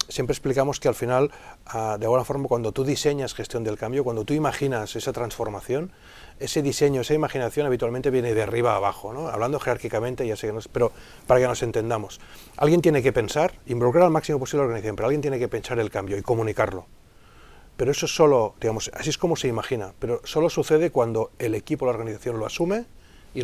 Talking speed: 210 wpm